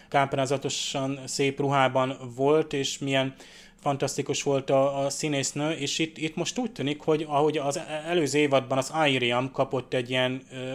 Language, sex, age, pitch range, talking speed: Hungarian, male, 20-39, 130-145 Hz, 155 wpm